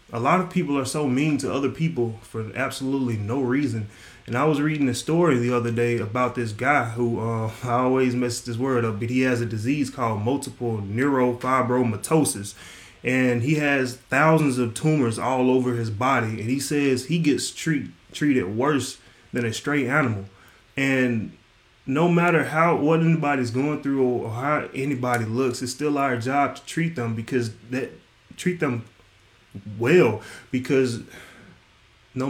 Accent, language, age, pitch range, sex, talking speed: American, English, 20-39, 115-135 Hz, male, 165 wpm